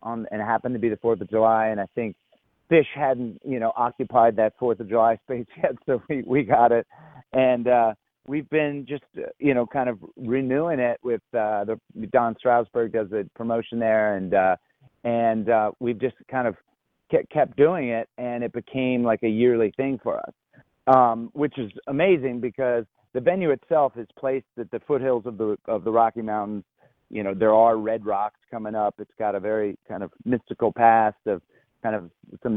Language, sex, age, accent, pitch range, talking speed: English, male, 40-59, American, 110-125 Hz, 205 wpm